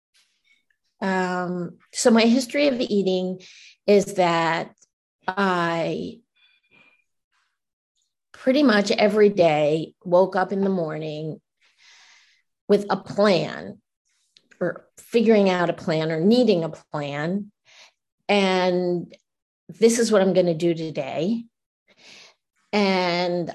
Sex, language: female, English